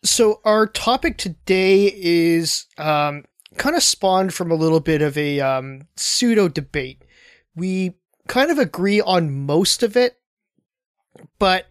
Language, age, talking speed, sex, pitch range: English, 20-39, 140 wpm, male, 150-195 Hz